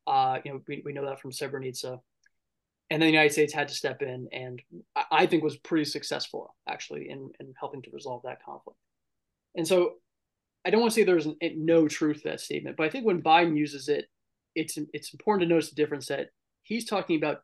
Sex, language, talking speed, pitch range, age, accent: male, English, 225 wpm, 140-160 Hz, 20-39, American